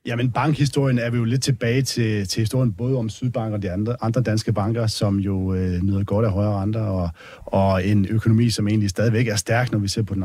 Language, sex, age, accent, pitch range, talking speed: Danish, male, 30-49, native, 100-120 Hz, 240 wpm